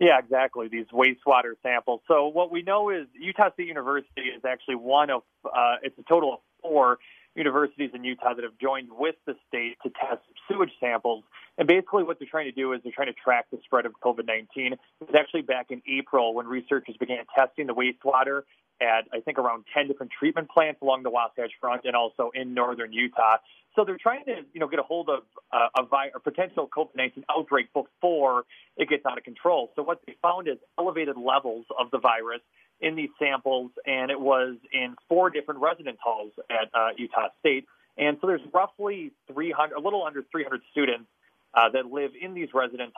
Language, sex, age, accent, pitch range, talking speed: English, male, 30-49, American, 125-155 Hz, 200 wpm